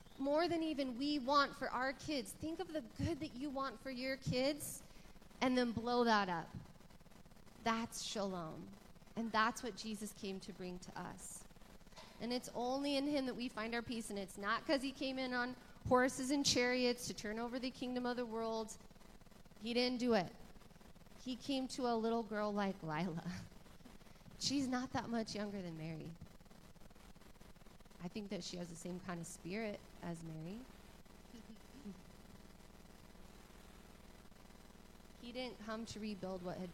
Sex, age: female, 30-49